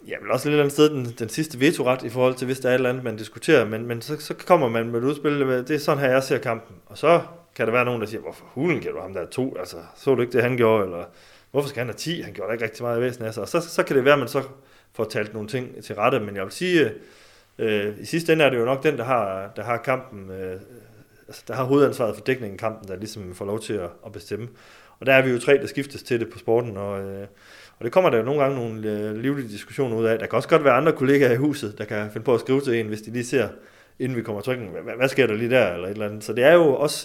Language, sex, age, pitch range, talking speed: Danish, male, 30-49, 105-130 Hz, 300 wpm